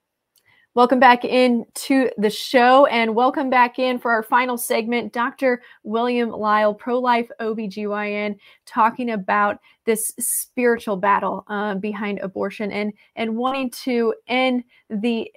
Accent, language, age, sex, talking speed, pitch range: American, English, 20-39, female, 130 wpm, 205-240 Hz